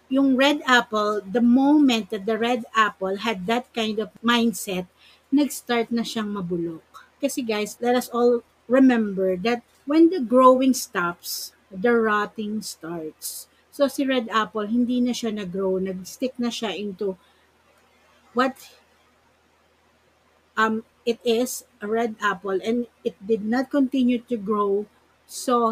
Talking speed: 140 wpm